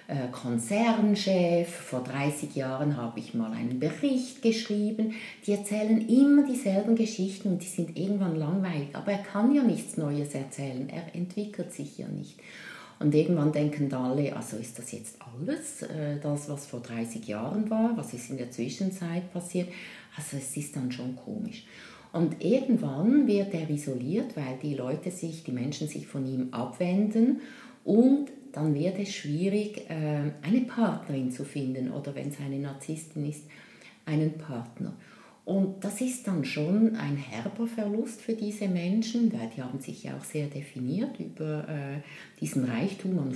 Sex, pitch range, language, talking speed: female, 140-205 Hz, German, 160 wpm